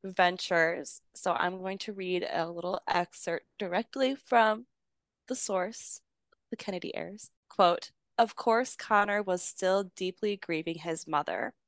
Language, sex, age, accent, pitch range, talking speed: English, female, 20-39, American, 165-200 Hz, 135 wpm